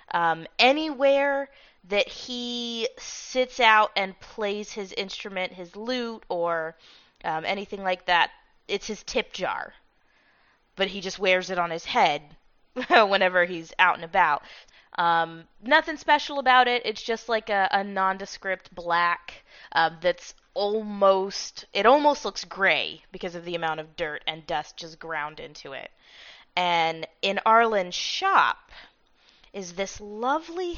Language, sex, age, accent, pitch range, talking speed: English, female, 20-39, American, 170-235 Hz, 140 wpm